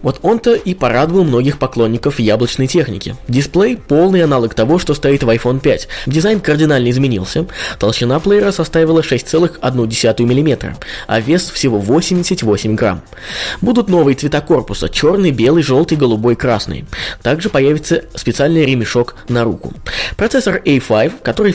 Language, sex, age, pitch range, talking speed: Russian, male, 20-39, 120-170 Hz, 135 wpm